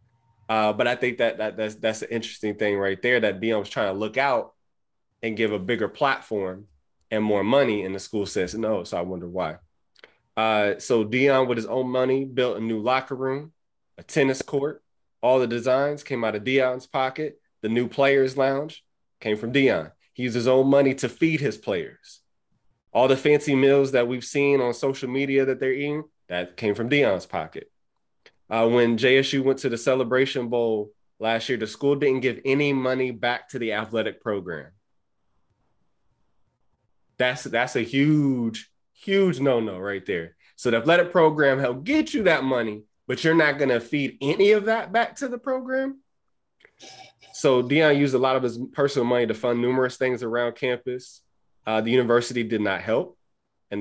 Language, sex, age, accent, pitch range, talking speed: English, male, 20-39, American, 110-135 Hz, 185 wpm